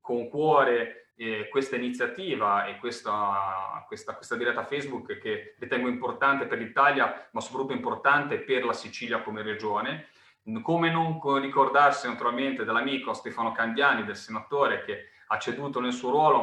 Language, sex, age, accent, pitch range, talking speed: Italian, male, 30-49, native, 115-150 Hz, 140 wpm